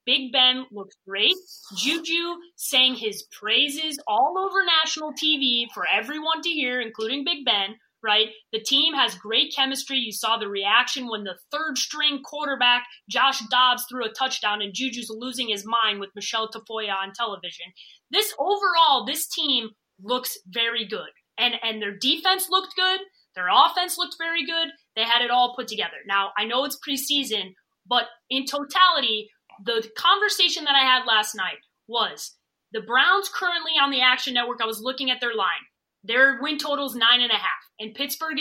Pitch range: 220-305 Hz